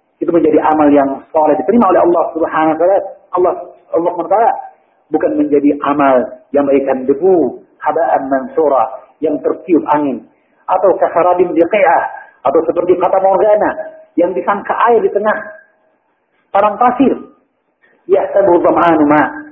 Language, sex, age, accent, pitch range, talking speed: Indonesian, male, 50-69, native, 165-265 Hz, 125 wpm